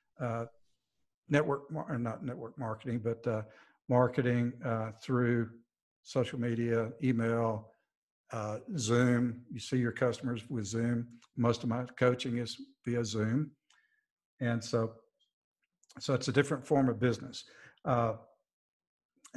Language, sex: English, male